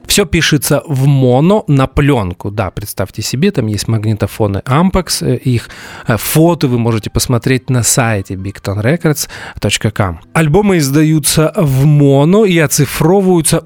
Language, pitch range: Russian, 120-165 Hz